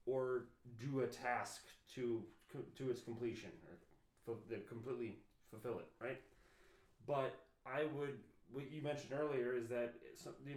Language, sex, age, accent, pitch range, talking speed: English, male, 30-49, American, 120-140 Hz, 130 wpm